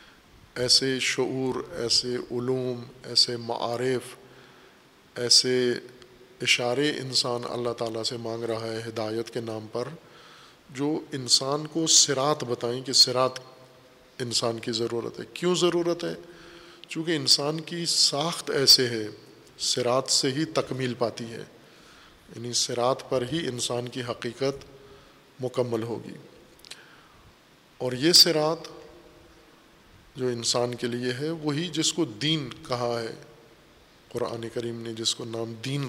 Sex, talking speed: male, 125 wpm